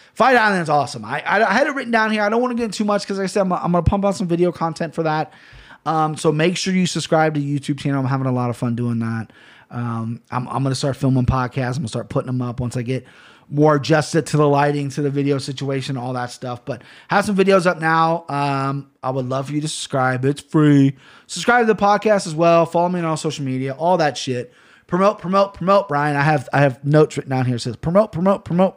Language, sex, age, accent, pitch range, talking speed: English, male, 30-49, American, 130-165 Hz, 260 wpm